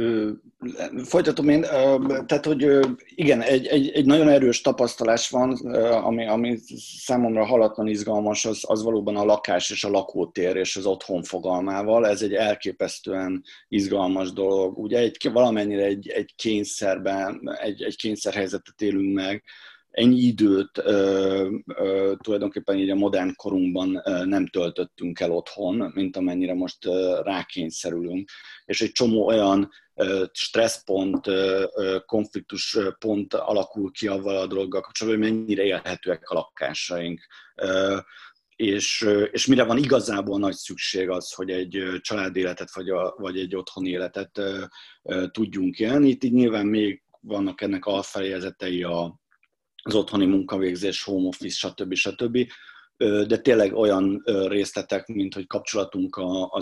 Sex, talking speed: male, 135 wpm